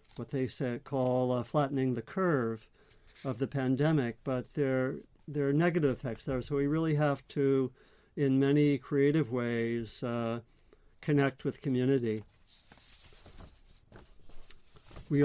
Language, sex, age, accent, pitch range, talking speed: English, male, 50-69, American, 115-140 Hz, 120 wpm